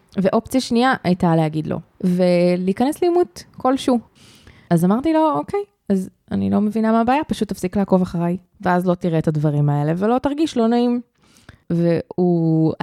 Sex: female